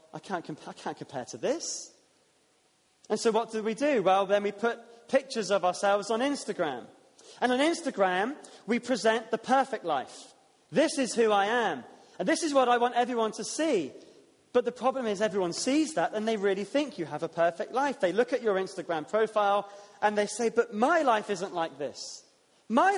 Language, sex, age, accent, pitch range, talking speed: English, male, 30-49, British, 190-245 Hz, 195 wpm